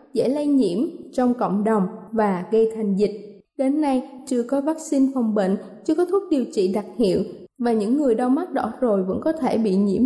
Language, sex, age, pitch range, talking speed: Vietnamese, female, 20-39, 215-290 Hz, 215 wpm